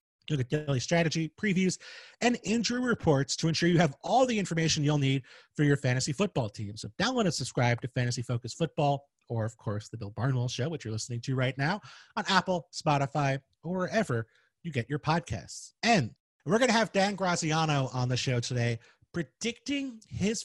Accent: American